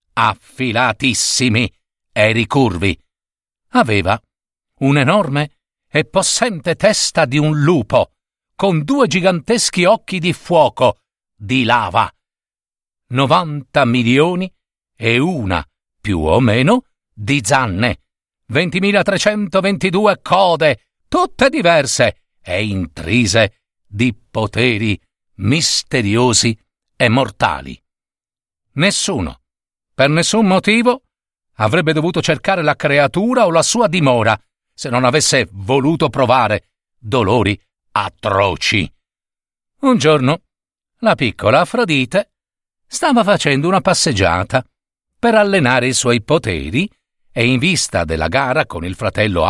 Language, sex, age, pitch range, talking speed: Italian, male, 50-69, 110-180 Hz, 100 wpm